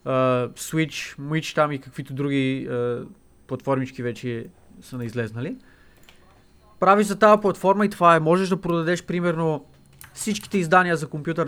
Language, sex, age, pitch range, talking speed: Bulgarian, male, 20-39, 135-185 Hz, 135 wpm